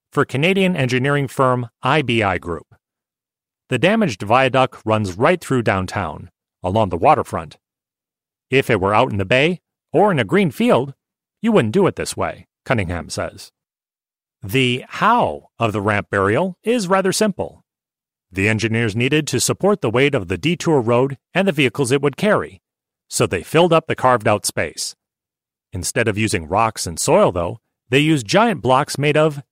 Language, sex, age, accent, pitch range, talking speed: English, male, 40-59, American, 110-150 Hz, 170 wpm